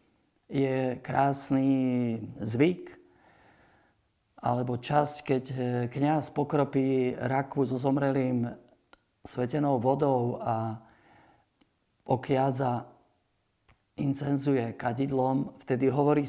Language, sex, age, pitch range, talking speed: Slovak, male, 50-69, 125-145 Hz, 70 wpm